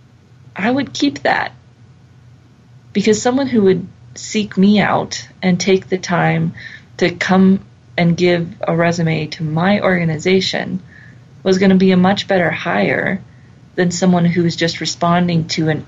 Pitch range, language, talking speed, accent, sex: 130-185 Hz, English, 150 wpm, American, female